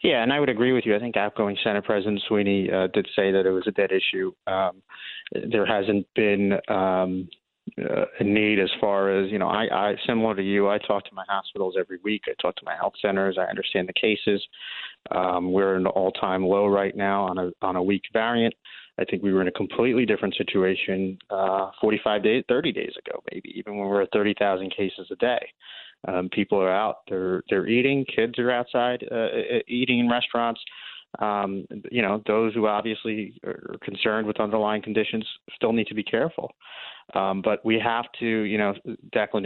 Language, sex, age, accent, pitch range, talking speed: English, male, 30-49, American, 95-110 Hz, 205 wpm